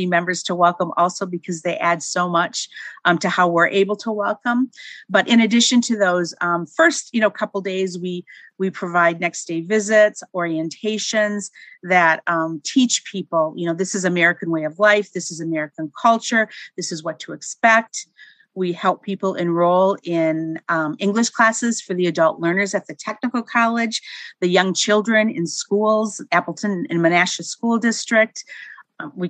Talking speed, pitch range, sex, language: 170 wpm, 170-215 Hz, female, English